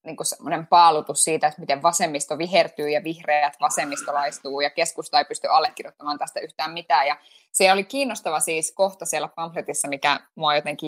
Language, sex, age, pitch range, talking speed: Finnish, female, 20-39, 155-220 Hz, 165 wpm